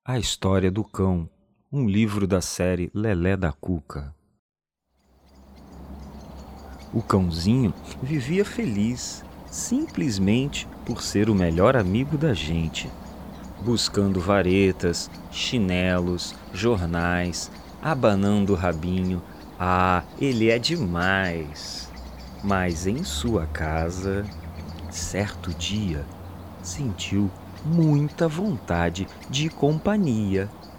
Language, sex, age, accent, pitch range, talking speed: Portuguese, male, 40-59, Brazilian, 85-135 Hz, 90 wpm